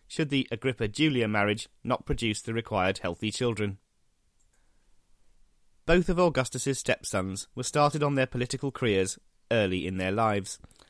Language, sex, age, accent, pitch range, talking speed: English, male, 30-49, British, 100-135 Hz, 130 wpm